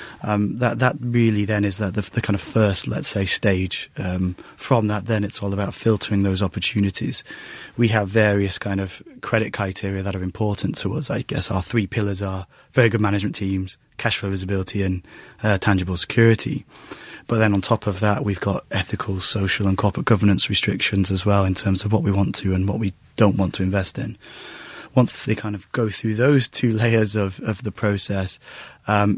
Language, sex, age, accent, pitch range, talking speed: English, male, 20-39, British, 95-110 Hz, 205 wpm